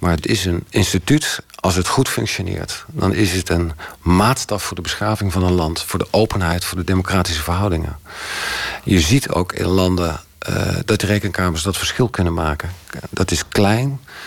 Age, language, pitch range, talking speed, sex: 50-69, Dutch, 90-110 Hz, 180 wpm, male